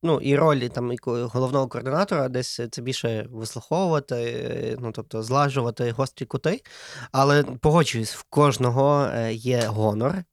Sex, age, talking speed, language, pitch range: male, 20-39, 130 wpm, Ukrainian, 115-145 Hz